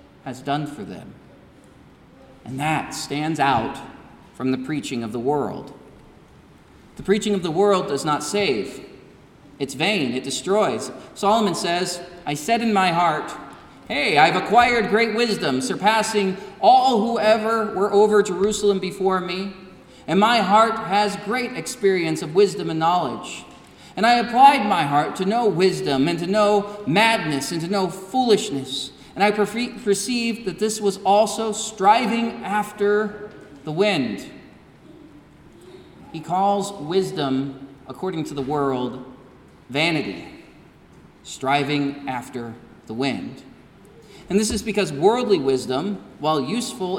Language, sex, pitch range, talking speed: English, male, 145-210 Hz, 130 wpm